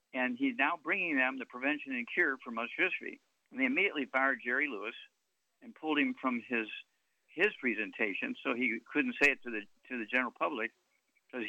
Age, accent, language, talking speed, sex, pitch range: 60-79, American, English, 195 wpm, male, 120-155 Hz